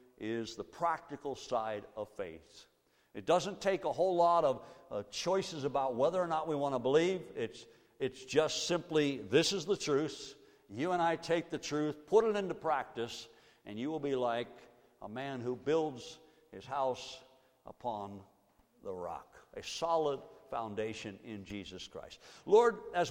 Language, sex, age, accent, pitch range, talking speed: English, male, 60-79, American, 125-175 Hz, 165 wpm